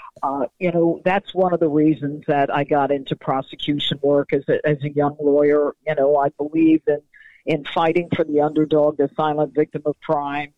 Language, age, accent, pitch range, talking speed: English, 50-69, American, 150-180 Hz, 200 wpm